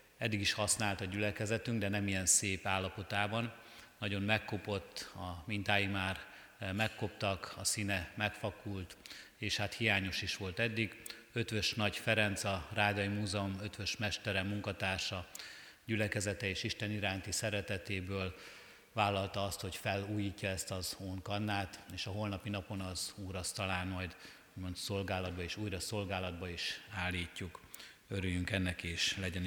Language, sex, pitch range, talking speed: Hungarian, male, 95-105 Hz, 130 wpm